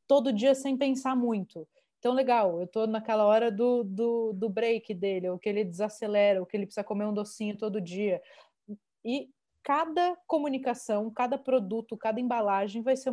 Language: Portuguese